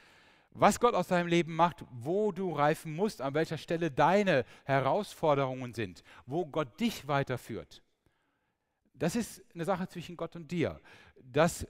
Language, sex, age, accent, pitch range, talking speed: German, male, 10-29, German, 115-165 Hz, 150 wpm